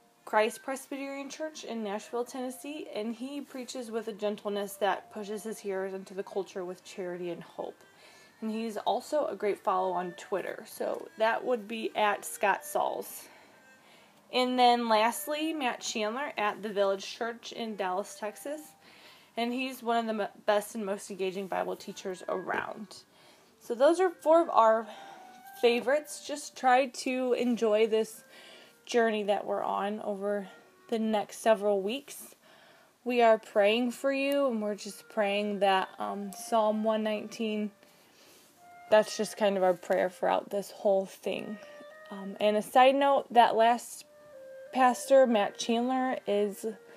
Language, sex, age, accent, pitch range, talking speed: English, female, 20-39, American, 205-265 Hz, 150 wpm